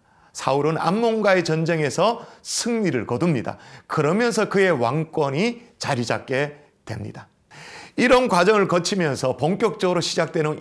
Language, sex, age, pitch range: Korean, male, 40-59, 145-210 Hz